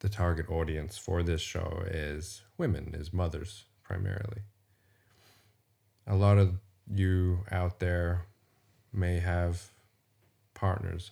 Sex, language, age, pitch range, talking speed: male, English, 30-49, 90-105 Hz, 110 wpm